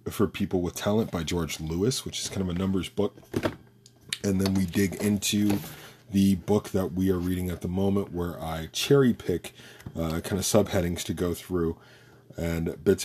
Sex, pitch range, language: male, 85-110 Hz, English